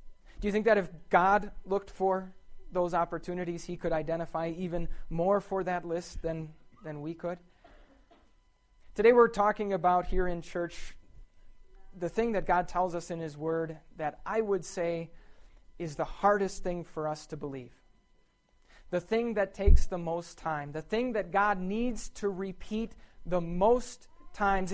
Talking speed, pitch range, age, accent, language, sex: 165 wpm, 160-195 Hz, 30-49, American, English, male